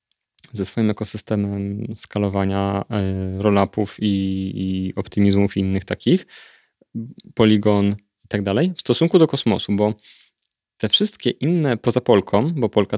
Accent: native